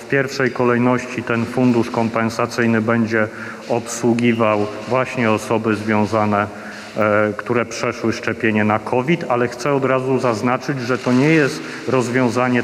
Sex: male